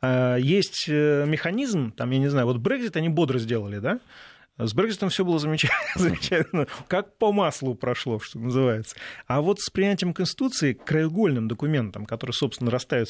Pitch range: 120-155 Hz